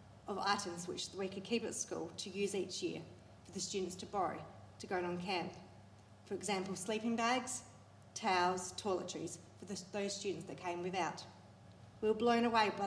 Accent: Australian